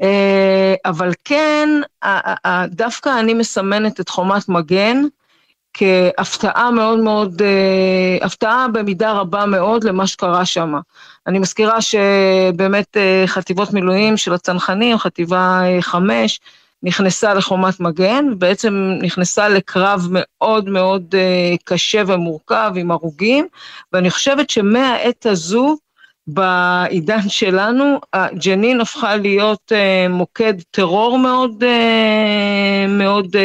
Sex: female